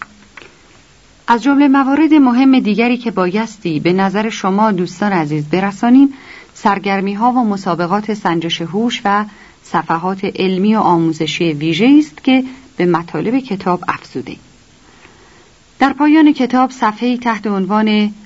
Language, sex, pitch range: Persian, female, 170-230 Hz